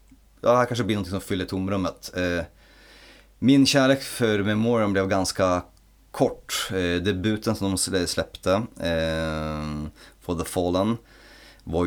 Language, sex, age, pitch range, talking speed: Swedish, male, 30-49, 80-105 Hz, 120 wpm